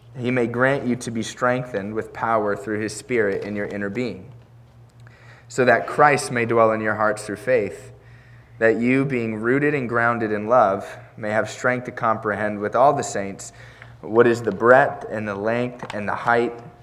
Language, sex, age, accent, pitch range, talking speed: English, male, 20-39, American, 105-120 Hz, 190 wpm